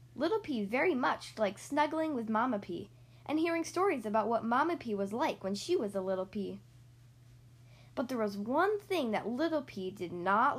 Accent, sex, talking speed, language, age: American, female, 195 wpm, English, 10-29